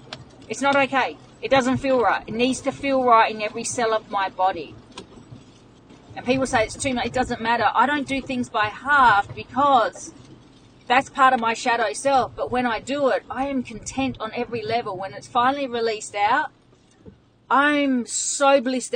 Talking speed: 185 wpm